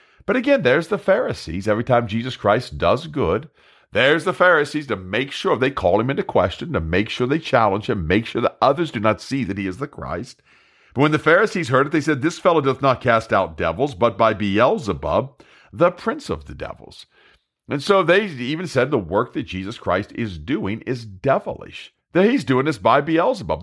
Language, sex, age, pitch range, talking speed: English, male, 50-69, 110-165 Hz, 210 wpm